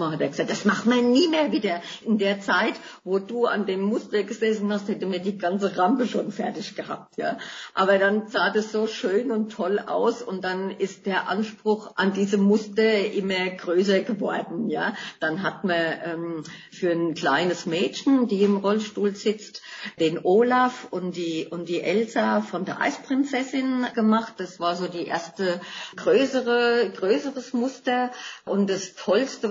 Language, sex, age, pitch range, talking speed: German, female, 50-69, 175-220 Hz, 170 wpm